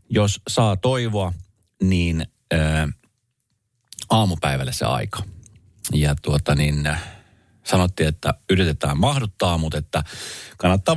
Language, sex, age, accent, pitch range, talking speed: Finnish, male, 30-49, native, 80-115 Hz, 105 wpm